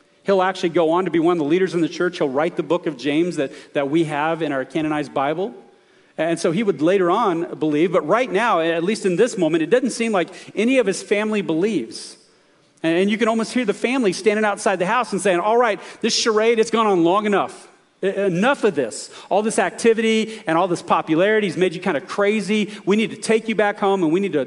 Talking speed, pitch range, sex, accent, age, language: 245 wpm, 170-220 Hz, male, American, 40-59, English